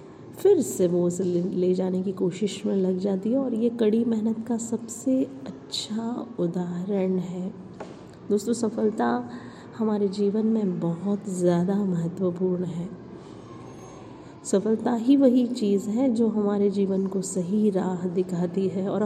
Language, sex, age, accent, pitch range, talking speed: Hindi, female, 30-49, native, 190-225 Hz, 140 wpm